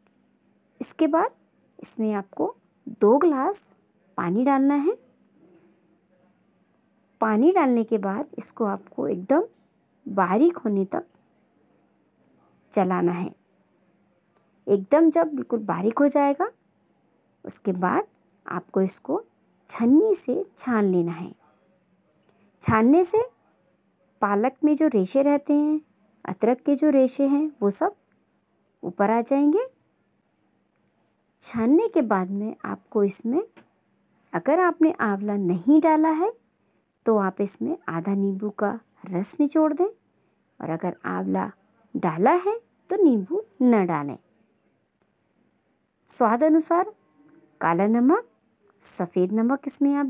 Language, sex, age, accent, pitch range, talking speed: Hindi, male, 50-69, native, 200-320 Hz, 110 wpm